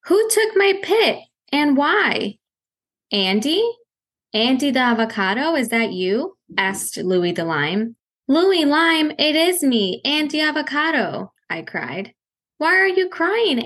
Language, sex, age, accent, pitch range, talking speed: English, female, 10-29, American, 195-300 Hz, 130 wpm